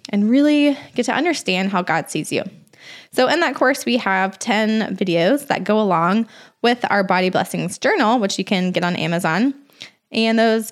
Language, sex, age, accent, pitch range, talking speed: English, female, 20-39, American, 190-235 Hz, 185 wpm